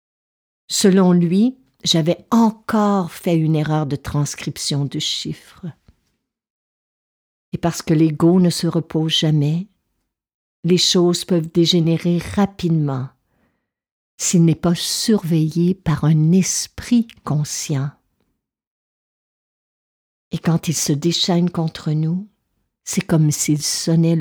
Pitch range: 150-180 Hz